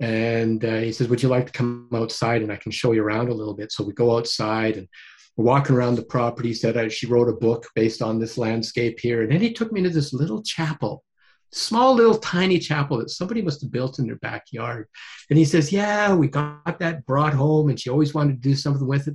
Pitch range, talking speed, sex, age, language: 115-150 Hz, 250 wpm, male, 50-69, English